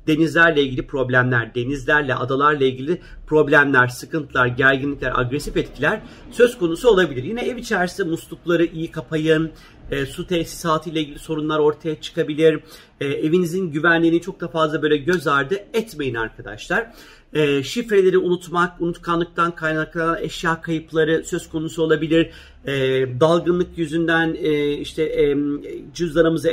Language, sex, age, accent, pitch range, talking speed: Turkish, male, 40-59, native, 150-185 Hz, 125 wpm